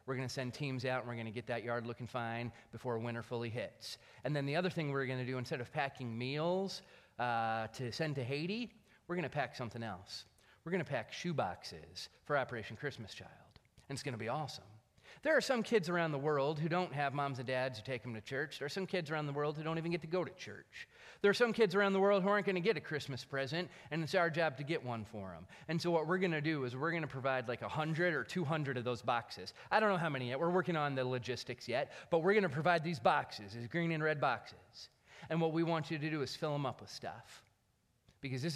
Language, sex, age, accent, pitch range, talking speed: English, male, 30-49, American, 125-165 Hz, 270 wpm